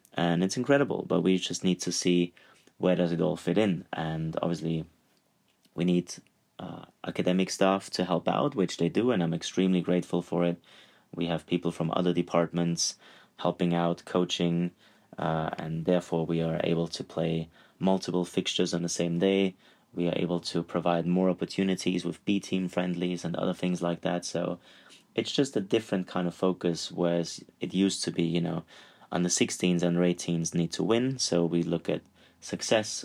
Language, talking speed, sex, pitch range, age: English, 180 wpm, male, 85-90 Hz, 30-49